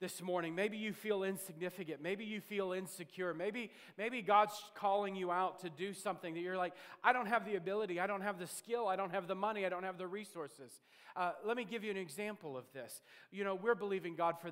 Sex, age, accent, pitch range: male, 40-59, American, 155-190 Hz